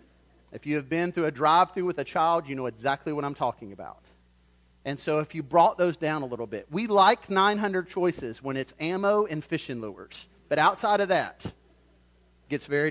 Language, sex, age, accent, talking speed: English, male, 40-59, American, 205 wpm